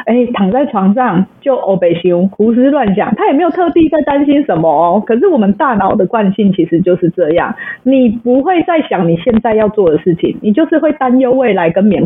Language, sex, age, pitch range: Chinese, female, 20-39, 190-280 Hz